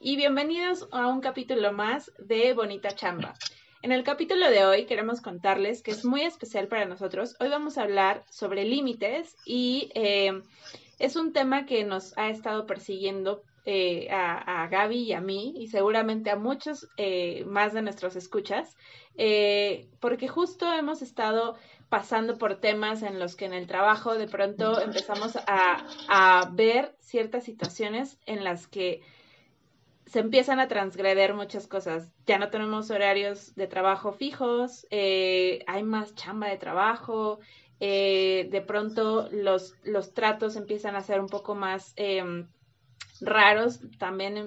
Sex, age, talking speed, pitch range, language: female, 20-39, 150 wpm, 195-230 Hz, Spanish